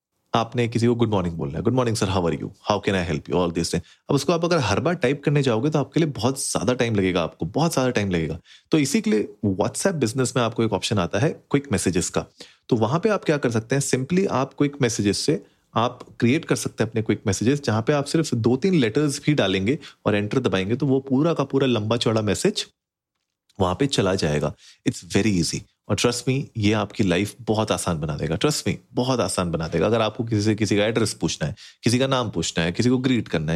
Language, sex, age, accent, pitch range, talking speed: Hindi, male, 30-49, native, 95-135 Hz, 240 wpm